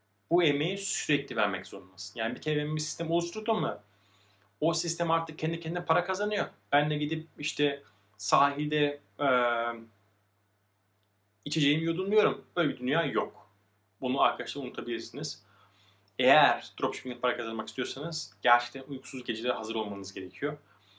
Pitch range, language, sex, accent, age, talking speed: 105-155 Hz, Turkish, male, native, 30-49, 130 wpm